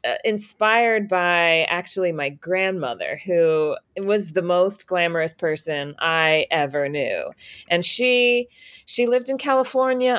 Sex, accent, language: female, American, English